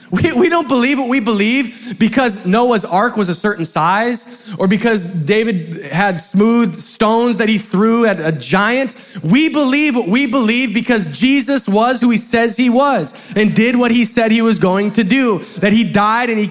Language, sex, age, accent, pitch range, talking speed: English, male, 20-39, American, 175-230 Hz, 195 wpm